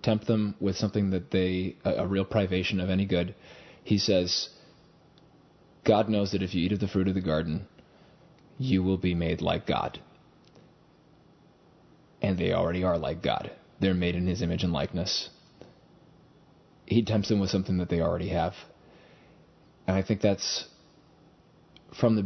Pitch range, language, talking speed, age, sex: 90-105 Hz, English, 165 wpm, 30-49, male